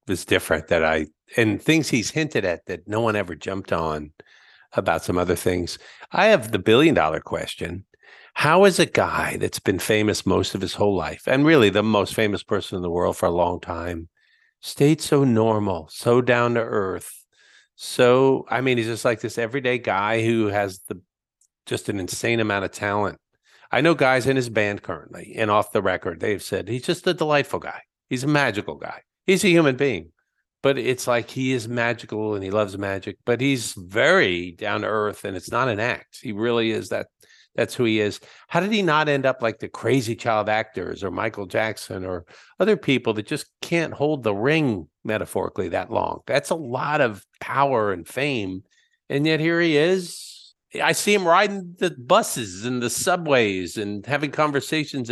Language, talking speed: English, 195 wpm